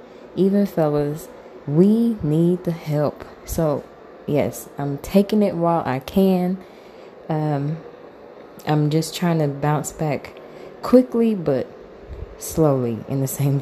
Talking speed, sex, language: 120 wpm, female, English